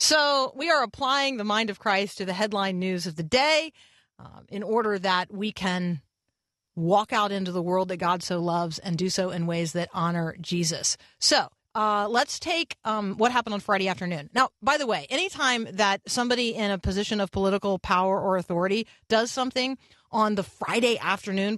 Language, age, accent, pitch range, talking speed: English, 40-59, American, 185-260 Hz, 195 wpm